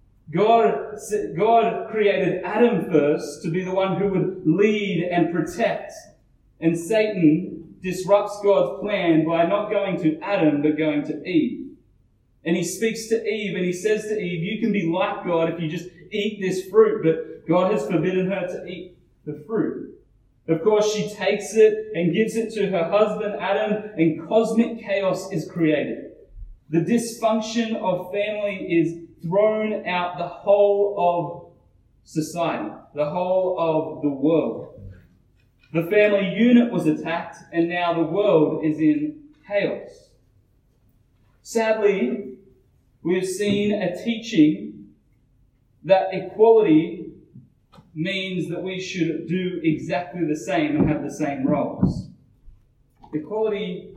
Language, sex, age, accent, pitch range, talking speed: English, male, 30-49, Australian, 155-205 Hz, 140 wpm